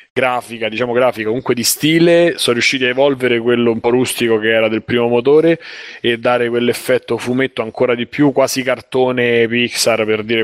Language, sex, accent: Italian, male, native